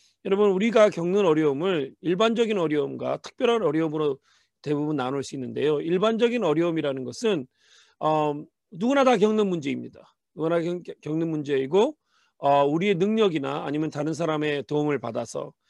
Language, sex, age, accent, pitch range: Korean, male, 40-59, native, 150-225 Hz